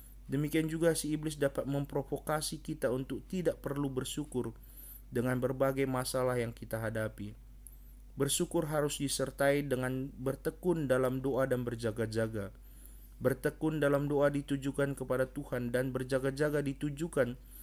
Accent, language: native, Indonesian